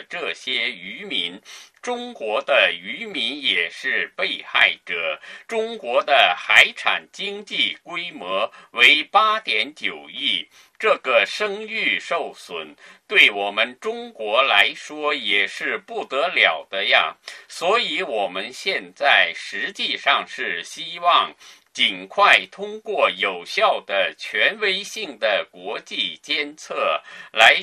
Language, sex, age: Chinese, male, 50-69